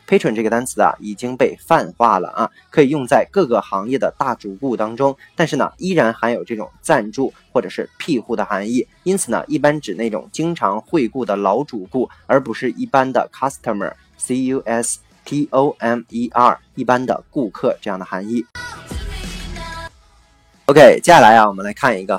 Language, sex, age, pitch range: Chinese, male, 20-39, 110-140 Hz